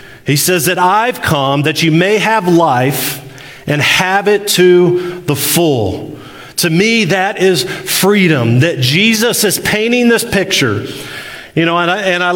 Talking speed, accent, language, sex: 150 wpm, American, English, male